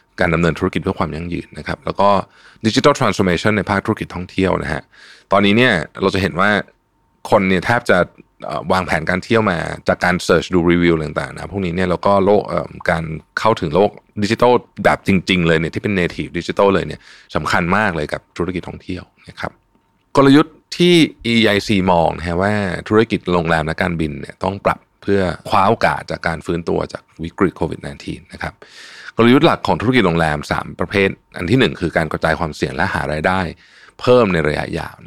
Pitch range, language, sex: 85-100 Hz, Thai, male